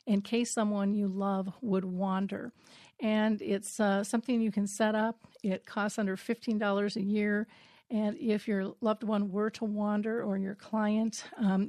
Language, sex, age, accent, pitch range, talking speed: English, female, 50-69, American, 200-230 Hz, 170 wpm